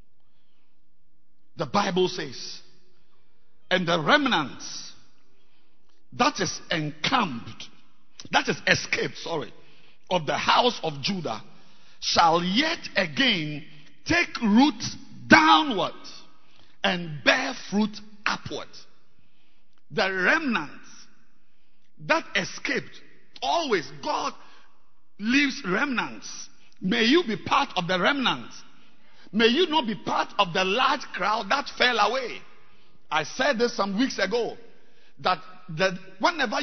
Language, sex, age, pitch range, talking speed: English, male, 50-69, 170-235 Hz, 105 wpm